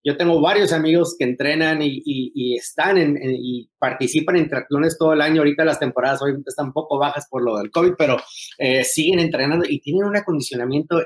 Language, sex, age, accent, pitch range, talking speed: Spanish, male, 30-49, Mexican, 135-165 Hz, 210 wpm